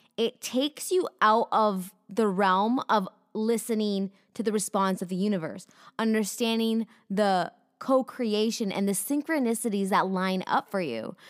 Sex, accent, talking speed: female, American, 140 wpm